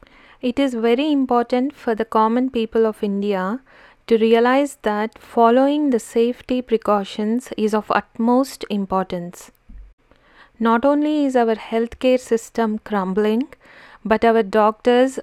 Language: Telugu